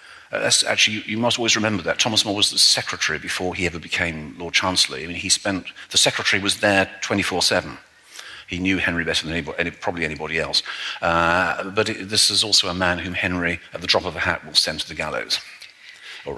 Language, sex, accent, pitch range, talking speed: English, male, British, 85-95 Hz, 210 wpm